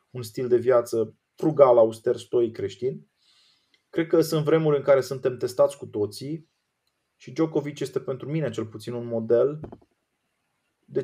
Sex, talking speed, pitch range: male, 150 wpm, 120-165 Hz